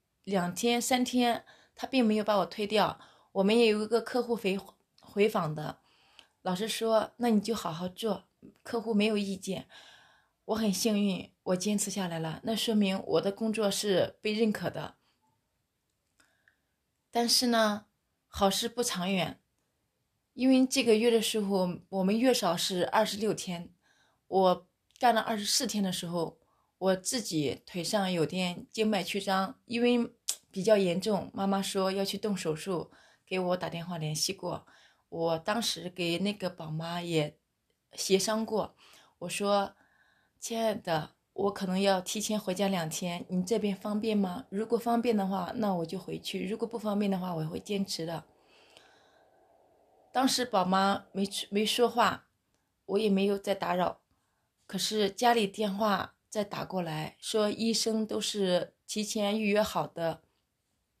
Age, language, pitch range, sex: 20-39, English, 185-220 Hz, female